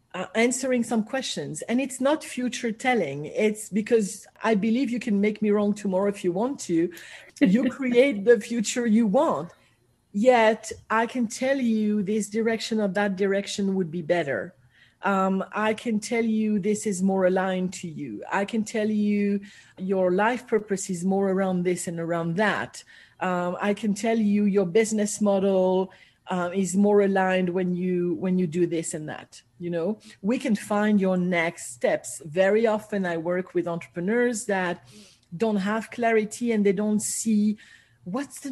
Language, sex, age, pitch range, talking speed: English, female, 40-59, 185-230 Hz, 175 wpm